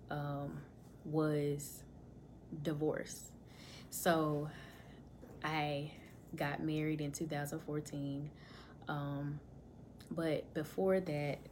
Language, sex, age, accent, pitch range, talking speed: English, female, 10-29, American, 145-165 Hz, 70 wpm